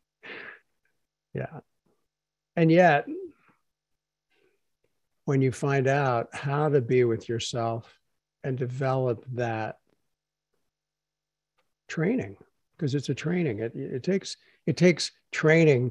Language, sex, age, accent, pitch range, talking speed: English, male, 60-79, American, 125-155 Hz, 100 wpm